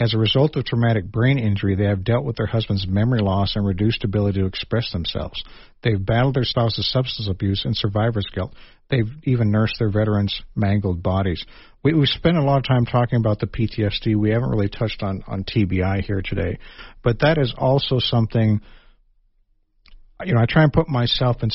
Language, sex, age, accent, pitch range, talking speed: English, male, 50-69, American, 100-120 Hz, 195 wpm